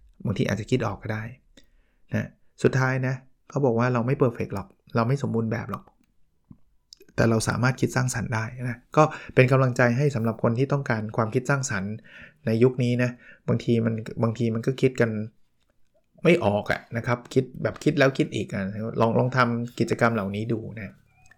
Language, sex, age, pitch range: Thai, male, 20-39, 110-130 Hz